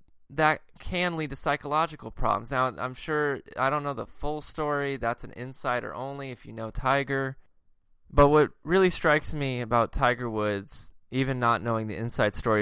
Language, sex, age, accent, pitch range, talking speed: English, male, 20-39, American, 110-140 Hz, 175 wpm